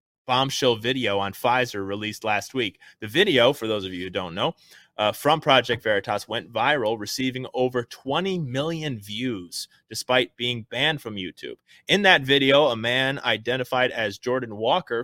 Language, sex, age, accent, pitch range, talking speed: English, male, 30-49, American, 110-140 Hz, 165 wpm